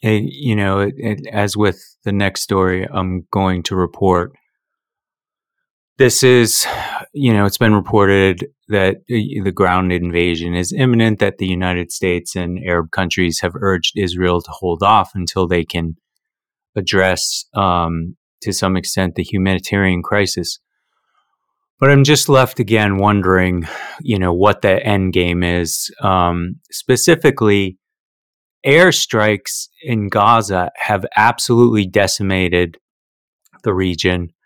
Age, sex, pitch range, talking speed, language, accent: 30-49, male, 90-105 Hz, 130 wpm, English, American